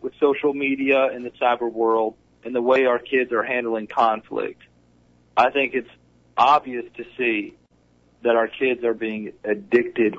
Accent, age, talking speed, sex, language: American, 40-59, 160 wpm, male, English